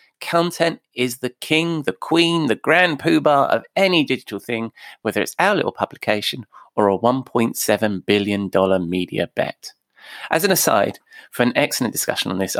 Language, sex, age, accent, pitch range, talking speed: English, male, 30-49, British, 105-150 Hz, 160 wpm